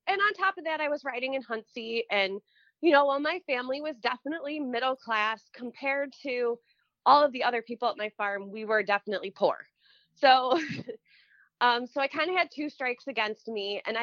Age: 20-39